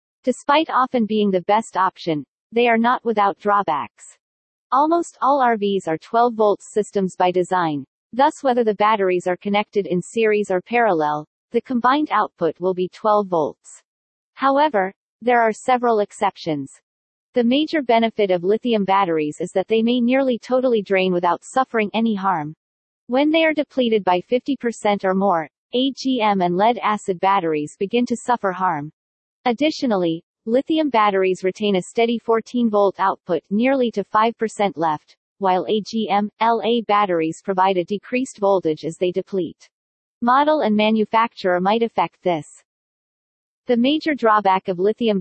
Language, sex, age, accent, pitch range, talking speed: English, female, 40-59, American, 185-240 Hz, 145 wpm